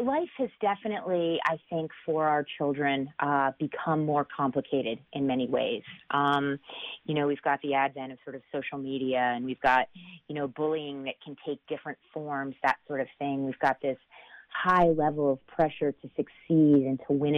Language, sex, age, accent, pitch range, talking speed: English, female, 30-49, American, 135-165 Hz, 185 wpm